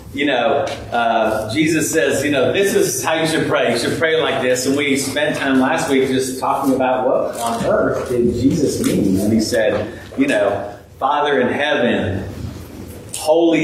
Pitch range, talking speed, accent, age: 120-155 Hz, 185 wpm, American, 40-59